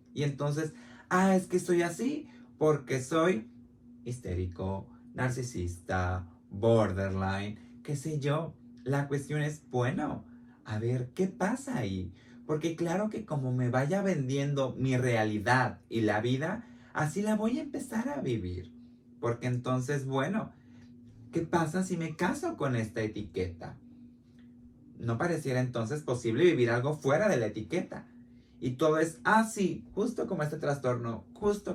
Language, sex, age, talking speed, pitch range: Spanish, male, 30-49, 140 wpm, 120-150 Hz